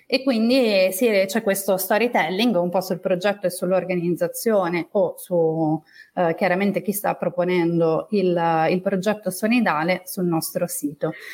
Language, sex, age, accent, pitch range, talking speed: Italian, female, 30-49, native, 180-245 Hz, 130 wpm